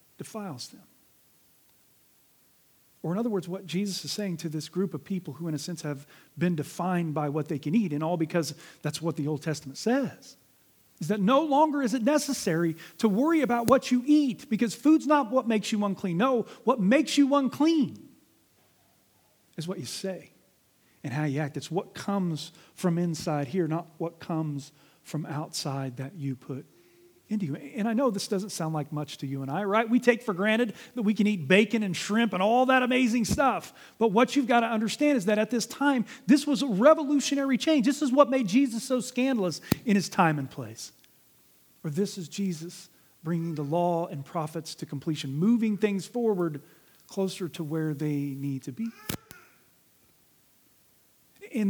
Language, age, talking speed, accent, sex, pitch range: English, 40-59, 190 wpm, American, male, 160-235 Hz